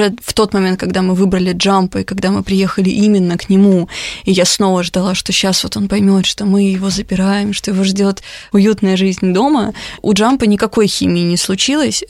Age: 20-39